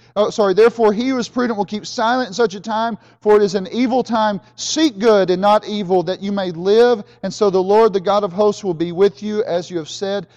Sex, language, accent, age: male, English, American, 40-59